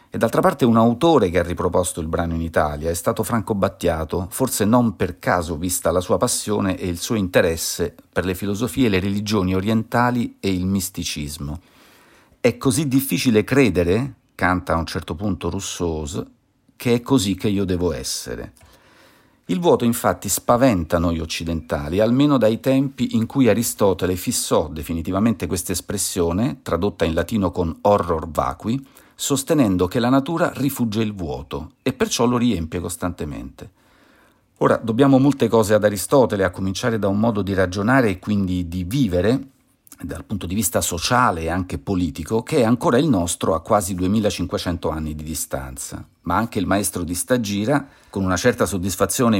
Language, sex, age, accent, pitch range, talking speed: Italian, male, 50-69, native, 90-120 Hz, 165 wpm